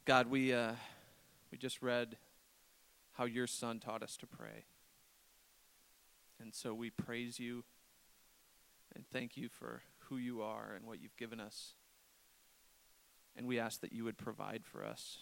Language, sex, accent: English, male, American